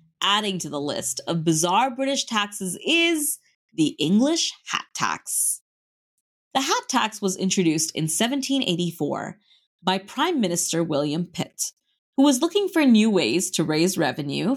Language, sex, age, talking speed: English, female, 30-49, 140 wpm